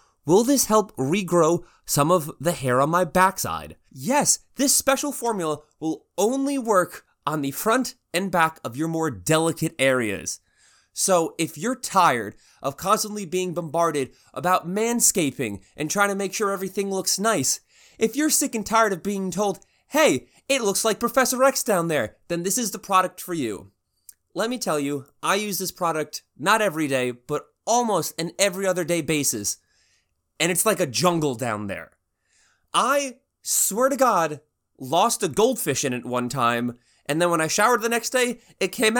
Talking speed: 175 wpm